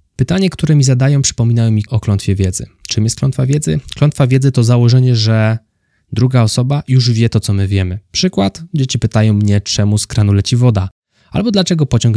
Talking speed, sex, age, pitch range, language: 185 wpm, male, 20-39, 105-135 Hz, Polish